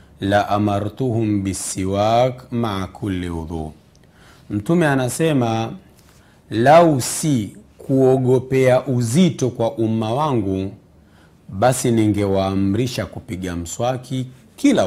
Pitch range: 95-130 Hz